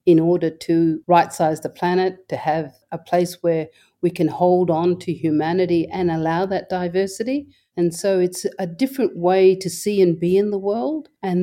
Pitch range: 165-190 Hz